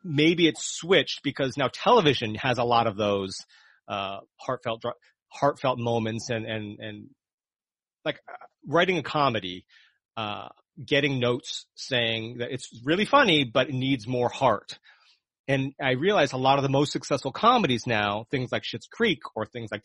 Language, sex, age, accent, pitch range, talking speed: English, male, 30-49, American, 120-160 Hz, 165 wpm